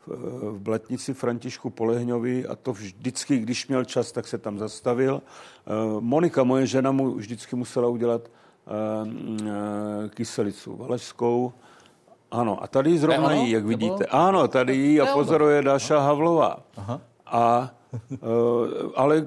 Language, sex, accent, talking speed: Czech, male, native, 120 wpm